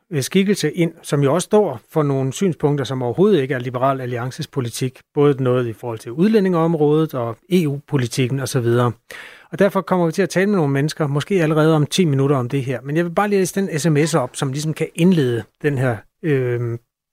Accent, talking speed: native, 200 wpm